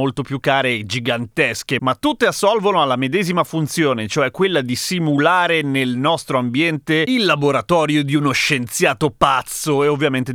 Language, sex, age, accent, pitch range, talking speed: Italian, male, 30-49, native, 130-185 Hz, 150 wpm